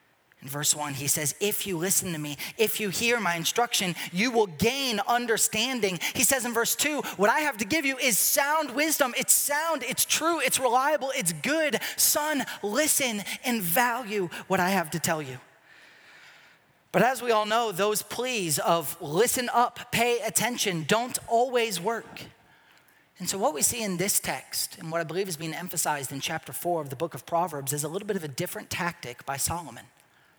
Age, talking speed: 30-49, 195 wpm